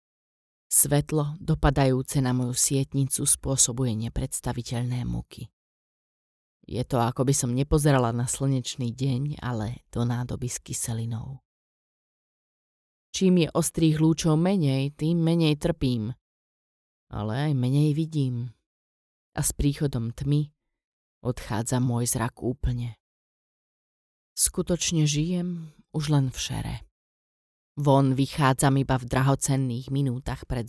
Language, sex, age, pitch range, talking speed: Slovak, female, 30-49, 120-145 Hz, 110 wpm